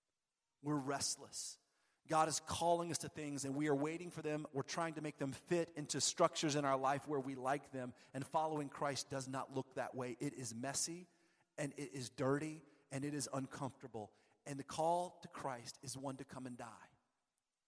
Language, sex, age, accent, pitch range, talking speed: English, male, 40-59, American, 135-165 Hz, 200 wpm